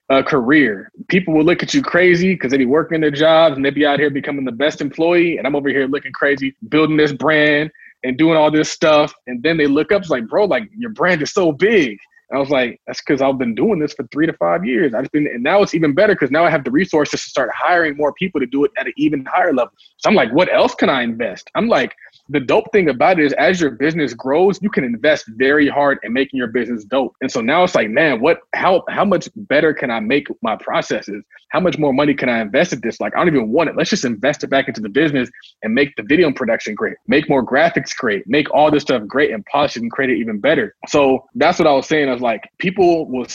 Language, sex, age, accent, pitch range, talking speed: English, male, 20-39, American, 130-165 Hz, 270 wpm